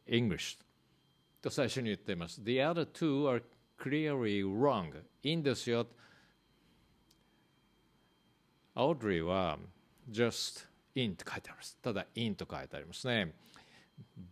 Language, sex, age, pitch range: Japanese, male, 50-69, 110-140 Hz